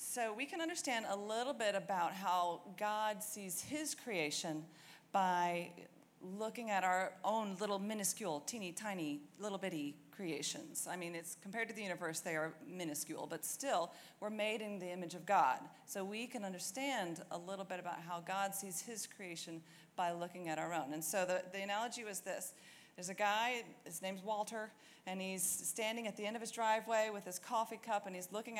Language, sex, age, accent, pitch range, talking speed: English, female, 40-59, American, 180-215 Hz, 190 wpm